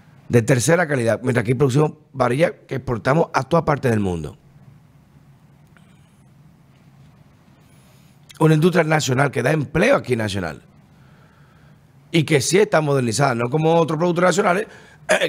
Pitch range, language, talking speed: 130-165 Hz, Spanish, 130 wpm